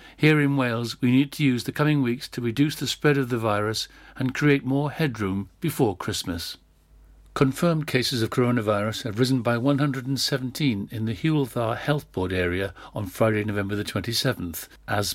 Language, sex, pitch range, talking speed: English, male, 105-135 Hz, 165 wpm